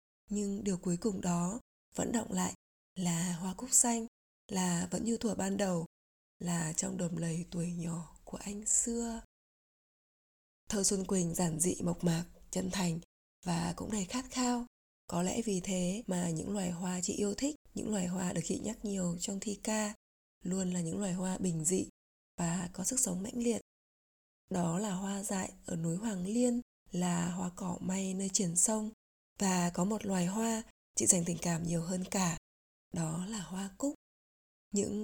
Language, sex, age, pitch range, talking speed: Vietnamese, female, 20-39, 180-215 Hz, 185 wpm